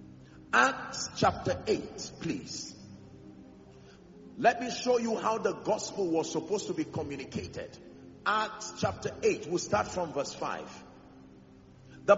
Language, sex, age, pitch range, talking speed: English, male, 50-69, 180-275 Hz, 125 wpm